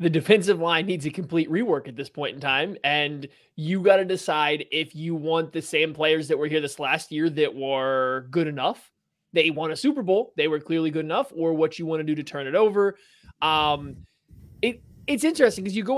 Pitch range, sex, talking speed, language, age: 155-185 Hz, male, 220 wpm, English, 20-39